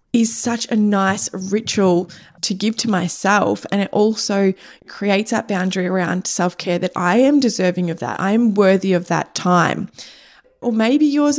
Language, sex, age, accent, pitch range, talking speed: English, female, 20-39, Australian, 185-210 Hz, 170 wpm